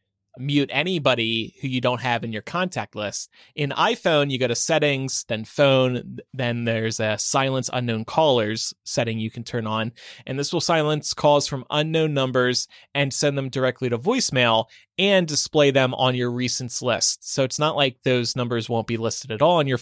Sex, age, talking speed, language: male, 20-39, 190 wpm, English